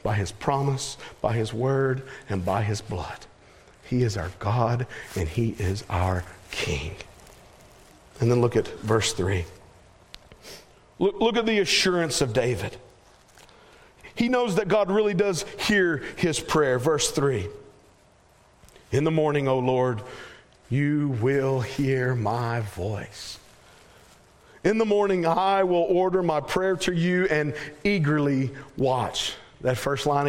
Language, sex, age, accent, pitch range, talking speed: English, male, 40-59, American, 115-180 Hz, 135 wpm